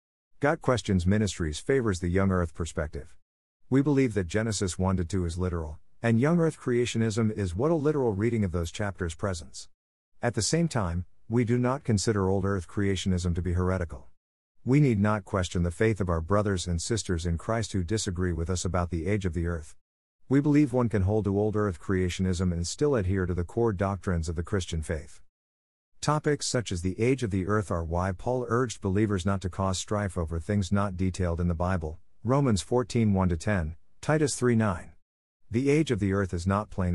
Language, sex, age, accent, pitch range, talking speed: English, male, 50-69, American, 90-115 Hz, 195 wpm